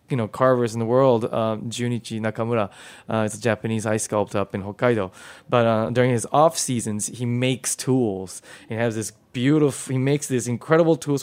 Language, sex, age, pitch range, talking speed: English, male, 20-39, 110-130 Hz, 190 wpm